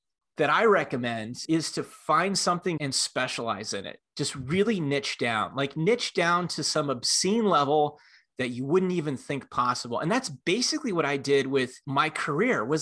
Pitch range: 135-190 Hz